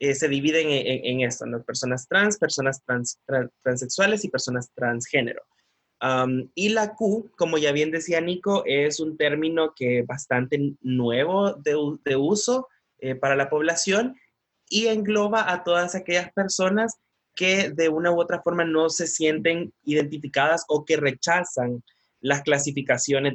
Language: Spanish